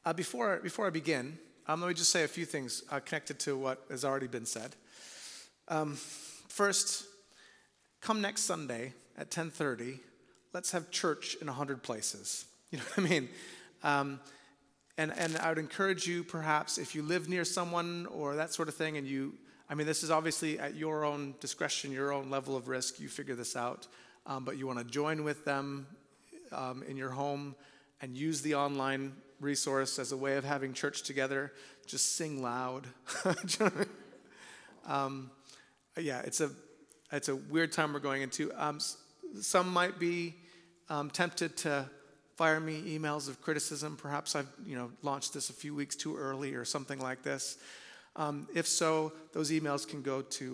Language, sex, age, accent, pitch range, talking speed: English, male, 30-49, American, 135-165 Hz, 180 wpm